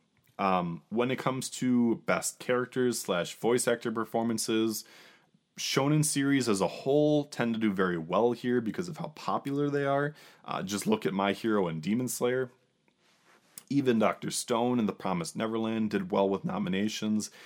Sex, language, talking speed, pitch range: male, English, 165 wpm, 100-125 Hz